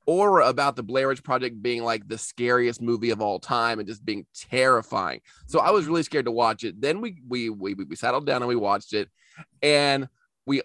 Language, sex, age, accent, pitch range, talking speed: English, male, 20-39, American, 115-145 Hz, 215 wpm